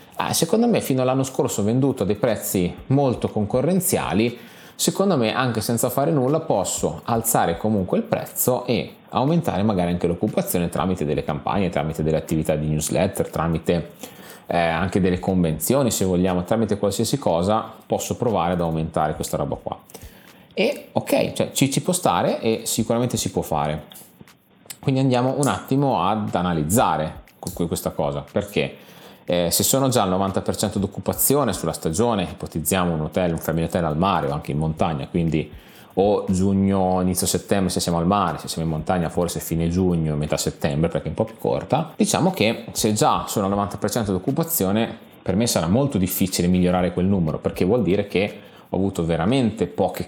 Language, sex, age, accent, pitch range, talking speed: Italian, male, 30-49, native, 85-115 Hz, 170 wpm